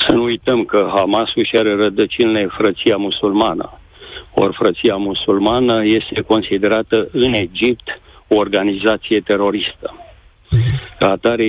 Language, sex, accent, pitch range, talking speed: Romanian, male, native, 100-120 Hz, 115 wpm